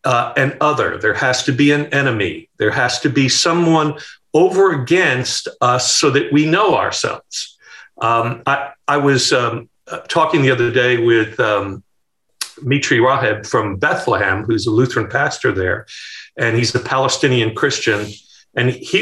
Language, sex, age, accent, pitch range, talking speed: English, male, 50-69, American, 125-165 Hz, 155 wpm